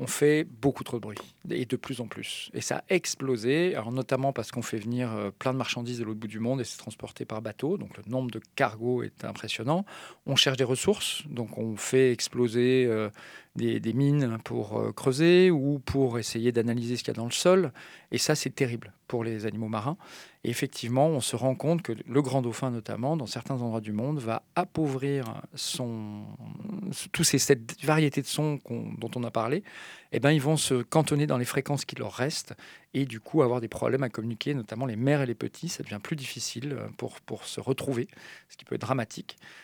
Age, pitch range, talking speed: 40-59, 115-145 Hz, 215 wpm